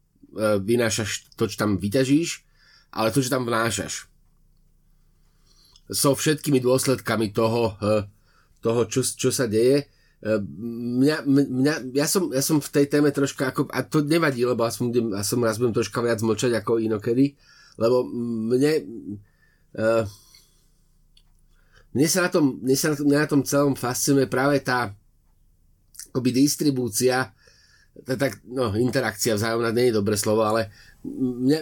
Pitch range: 110-140 Hz